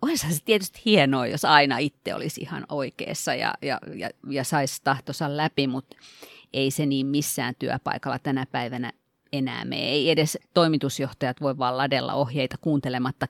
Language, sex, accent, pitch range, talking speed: Finnish, female, native, 135-170 Hz, 160 wpm